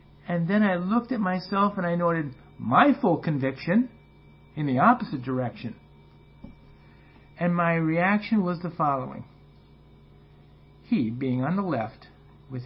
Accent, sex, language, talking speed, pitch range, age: American, male, English, 135 wpm, 125-175 Hz, 50-69